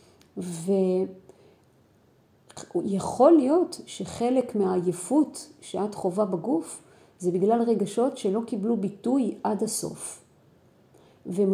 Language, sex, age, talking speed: Hebrew, female, 40-59, 90 wpm